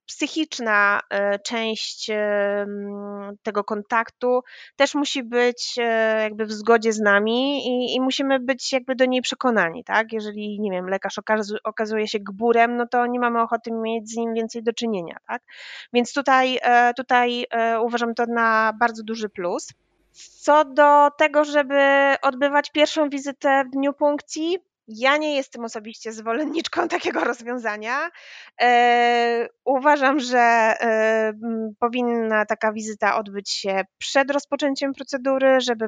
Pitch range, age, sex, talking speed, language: 205-260 Hz, 20-39, female, 125 wpm, Polish